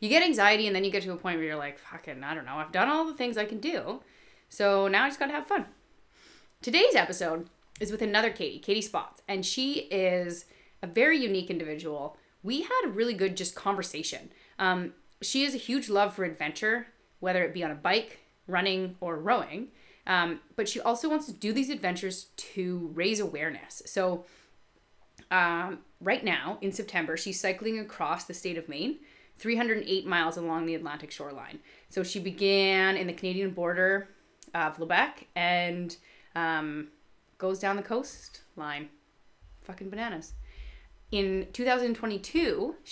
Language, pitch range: English, 165-215 Hz